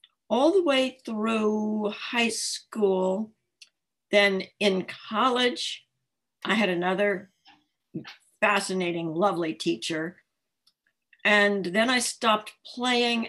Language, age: English, 60-79